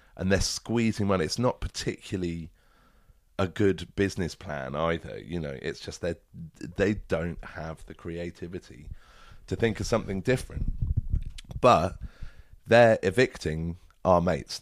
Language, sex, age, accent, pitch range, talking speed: English, male, 30-49, British, 80-100 Hz, 130 wpm